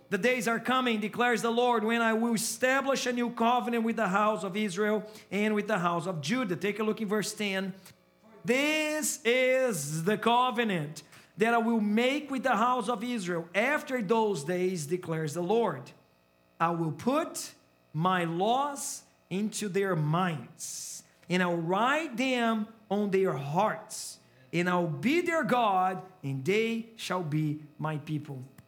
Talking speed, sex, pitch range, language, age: 165 wpm, male, 175-240 Hz, English, 40-59